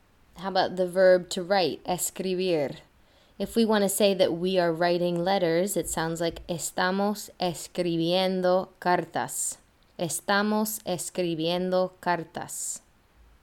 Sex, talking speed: female, 110 wpm